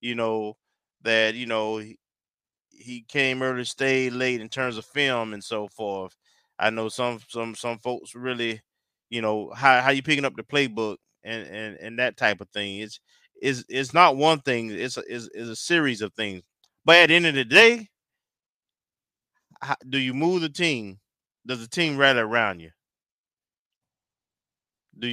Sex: male